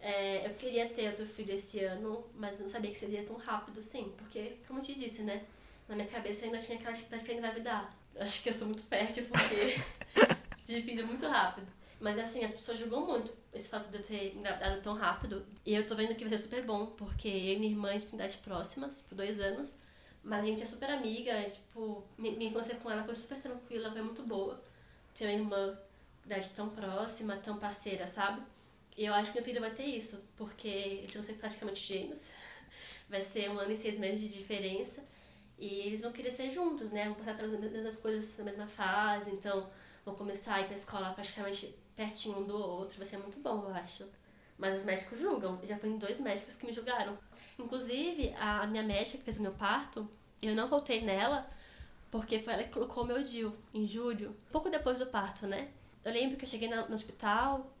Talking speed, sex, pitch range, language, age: 215 wpm, female, 205-230 Hz, Portuguese, 10-29